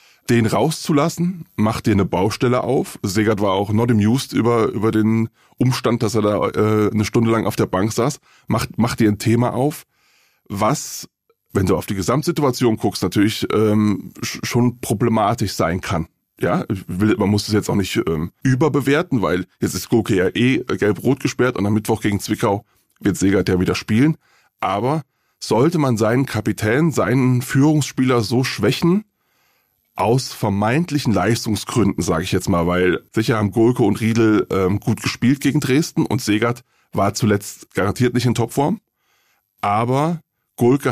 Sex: male